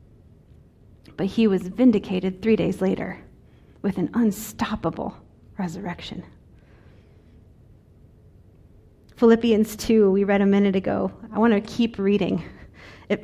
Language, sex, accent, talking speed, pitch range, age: English, female, American, 110 wpm, 195-235 Hz, 30-49